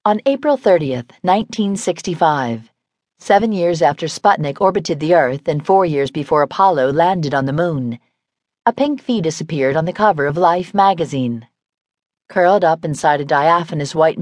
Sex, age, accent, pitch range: female, 40-59, American, 145-195 Hz